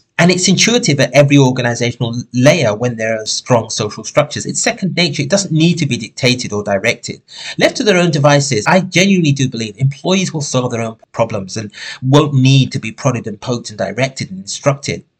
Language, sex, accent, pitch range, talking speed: English, male, British, 115-150 Hz, 200 wpm